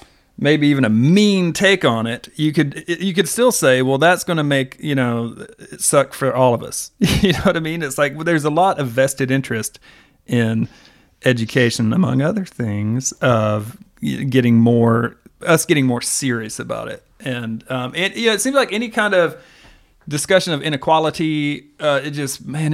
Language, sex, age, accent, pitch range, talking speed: English, male, 40-59, American, 125-155 Hz, 190 wpm